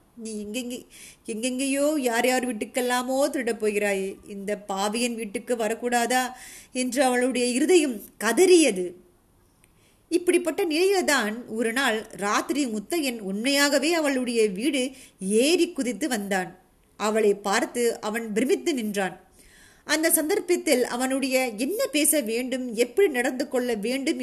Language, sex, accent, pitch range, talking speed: Tamil, female, native, 215-295 Hz, 105 wpm